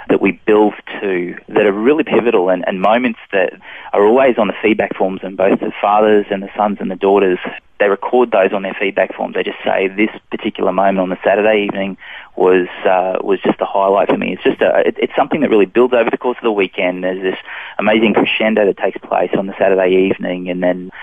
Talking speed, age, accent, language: 230 wpm, 20-39, Australian, English